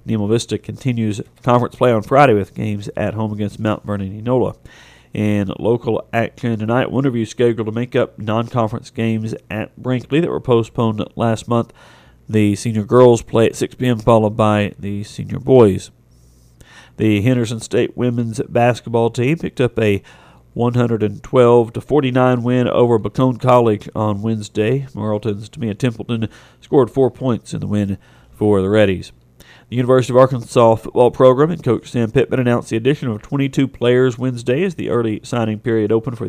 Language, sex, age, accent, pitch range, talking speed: English, male, 40-59, American, 105-125 Hz, 165 wpm